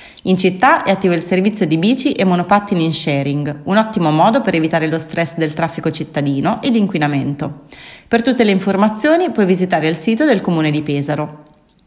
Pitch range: 155-220 Hz